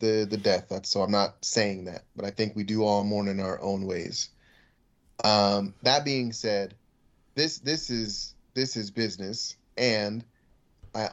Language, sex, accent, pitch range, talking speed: English, male, American, 105-125 Hz, 175 wpm